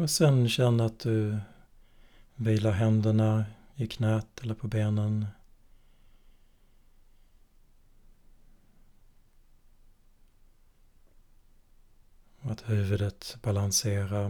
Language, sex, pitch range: Swedish, male, 95-110 Hz